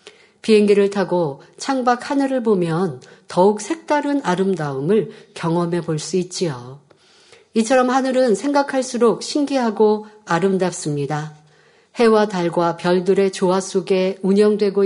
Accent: native